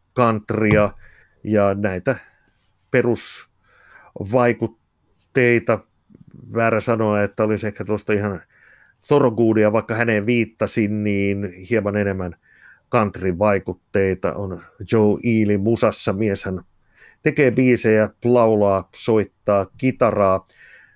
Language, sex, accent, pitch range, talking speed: Finnish, male, native, 100-120 Hz, 85 wpm